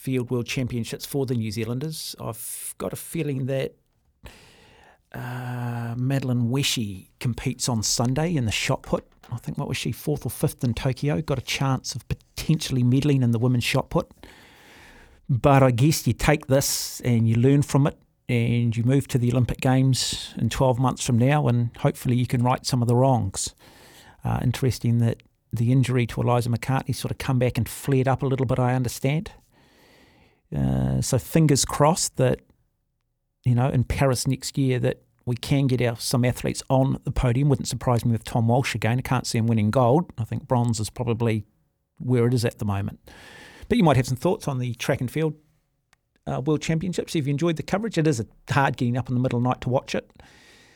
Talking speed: 205 wpm